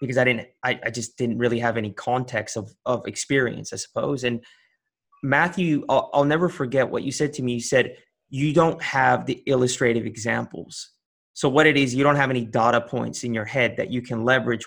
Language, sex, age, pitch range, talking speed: English, male, 30-49, 125-155 Hz, 215 wpm